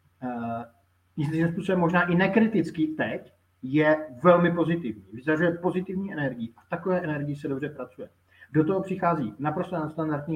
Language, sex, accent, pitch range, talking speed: Czech, male, native, 130-175 Hz, 140 wpm